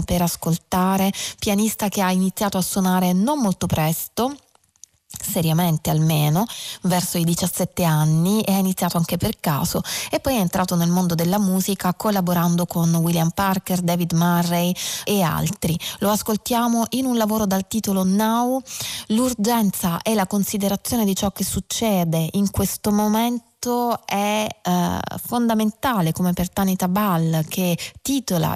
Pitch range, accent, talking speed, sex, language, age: 170-205 Hz, native, 140 wpm, female, Italian, 20-39